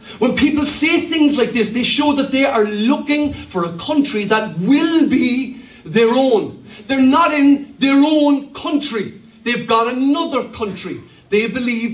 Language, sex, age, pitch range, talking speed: English, male, 50-69, 200-265 Hz, 160 wpm